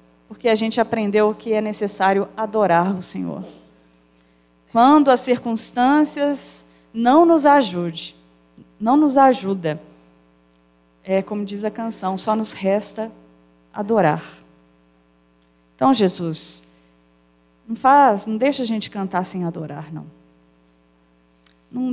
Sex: female